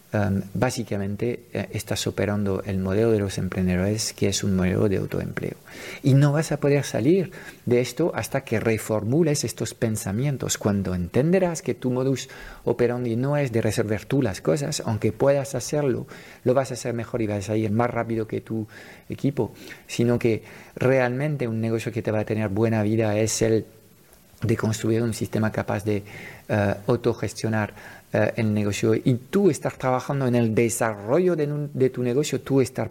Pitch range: 105-135 Hz